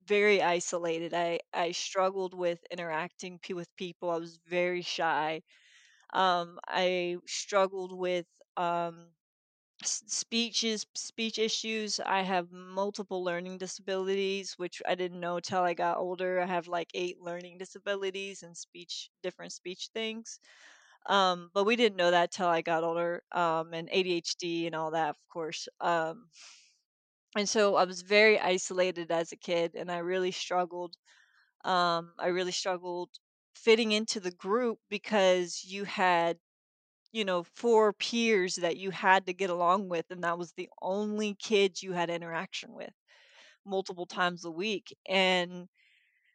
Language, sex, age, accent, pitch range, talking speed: English, female, 20-39, American, 170-200 Hz, 150 wpm